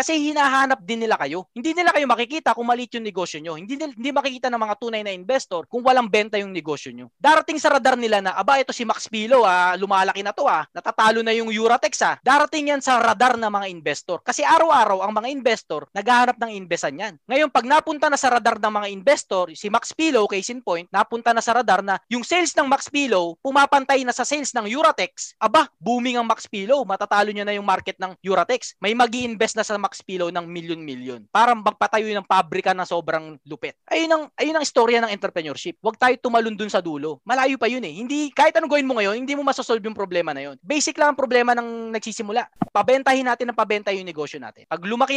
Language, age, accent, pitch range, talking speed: Filipino, 20-39, native, 195-260 Hz, 220 wpm